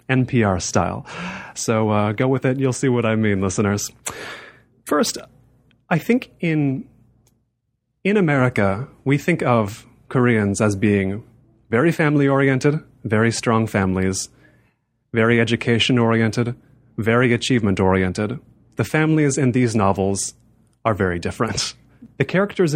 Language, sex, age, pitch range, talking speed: English, male, 30-49, 115-140 Hz, 115 wpm